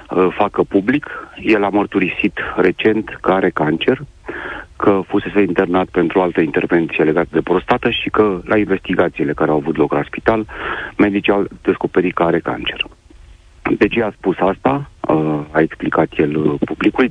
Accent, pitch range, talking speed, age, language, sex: native, 85-100 Hz, 150 wpm, 40-59, Romanian, male